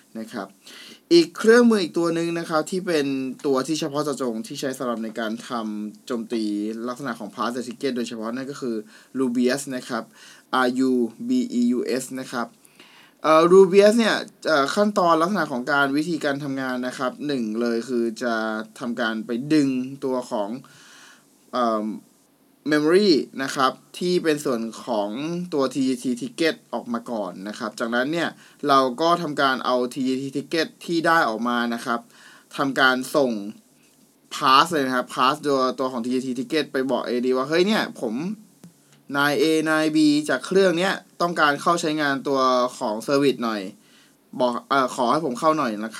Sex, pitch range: male, 120-155 Hz